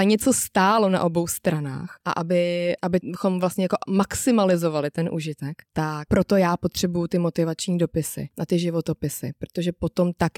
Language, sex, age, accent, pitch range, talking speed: Czech, female, 20-39, native, 170-185 Hz, 155 wpm